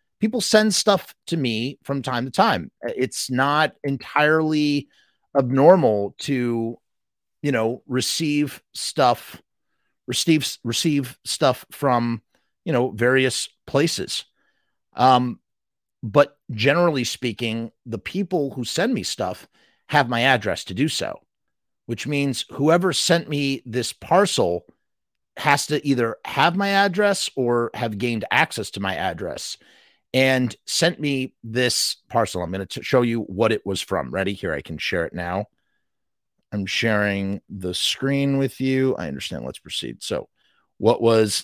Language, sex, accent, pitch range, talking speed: English, male, American, 115-145 Hz, 140 wpm